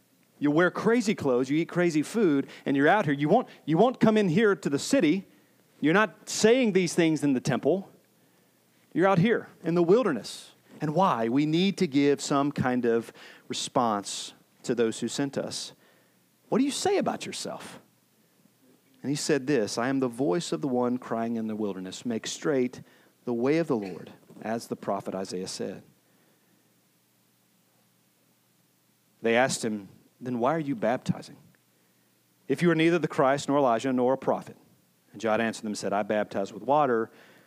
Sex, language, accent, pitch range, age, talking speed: male, English, American, 115-160 Hz, 40-59, 180 wpm